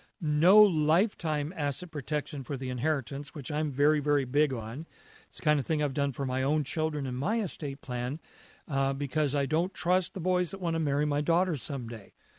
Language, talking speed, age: English, 205 wpm, 50-69